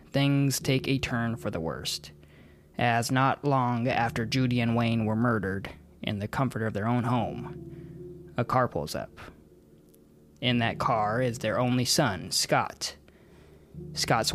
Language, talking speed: English, 150 wpm